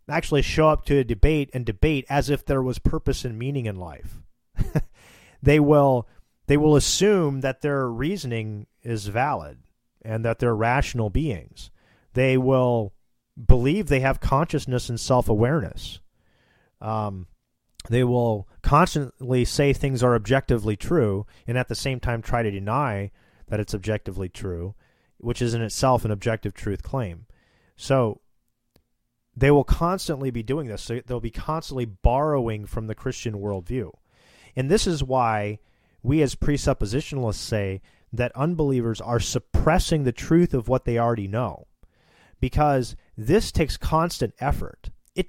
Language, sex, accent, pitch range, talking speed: English, male, American, 110-140 Hz, 145 wpm